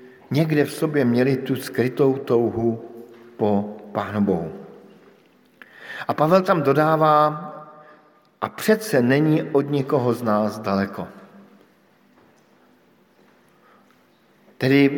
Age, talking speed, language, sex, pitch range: 50-69, 90 wpm, Slovak, male, 115-150 Hz